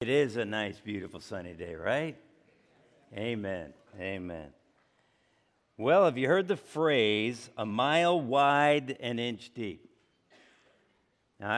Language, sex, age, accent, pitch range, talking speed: English, male, 60-79, American, 110-155 Hz, 125 wpm